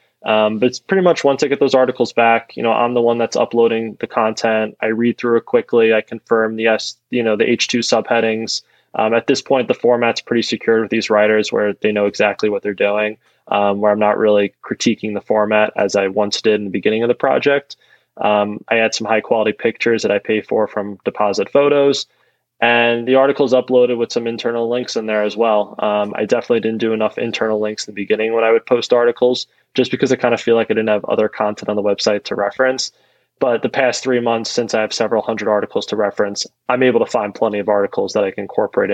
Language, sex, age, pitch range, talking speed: English, male, 20-39, 105-120 Hz, 235 wpm